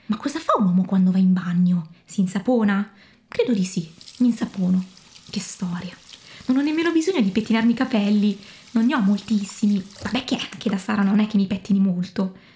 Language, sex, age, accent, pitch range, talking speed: Italian, female, 20-39, native, 200-265 Hz, 200 wpm